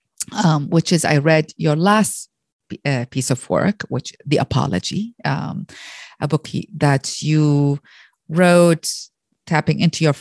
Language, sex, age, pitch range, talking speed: English, female, 30-49, 145-180 Hz, 135 wpm